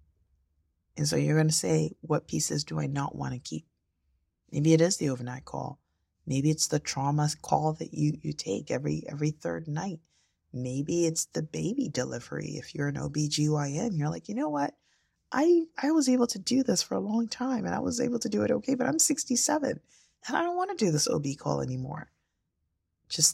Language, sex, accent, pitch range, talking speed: English, female, American, 140-210 Hz, 205 wpm